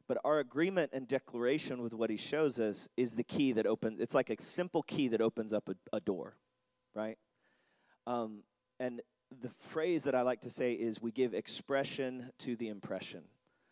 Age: 30-49